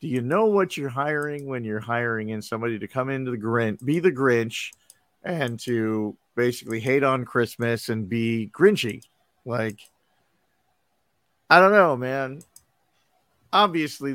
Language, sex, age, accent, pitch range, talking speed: English, male, 50-69, American, 110-140 Hz, 145 wpm